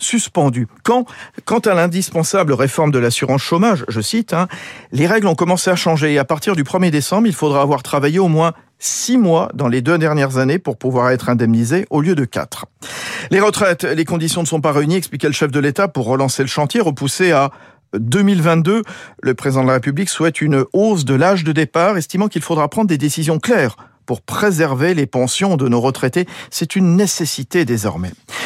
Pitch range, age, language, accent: 130-185 Hz, 50-69, French, French